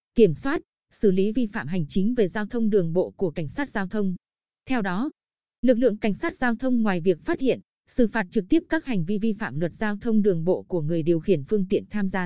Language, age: Vietnamese, 20-39